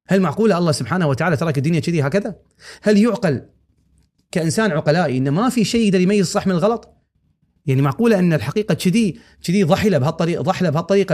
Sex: male